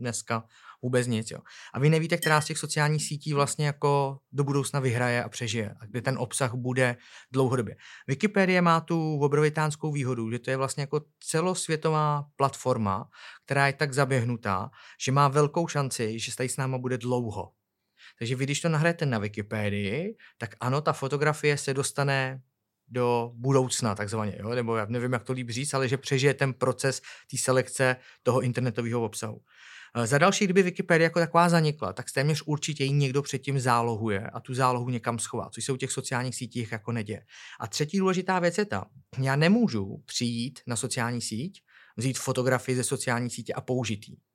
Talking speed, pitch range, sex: 175 wpm, 120-145 Hz, male